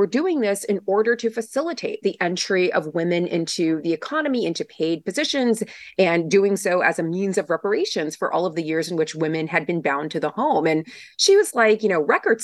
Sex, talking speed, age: female, 220 wpm, 30-49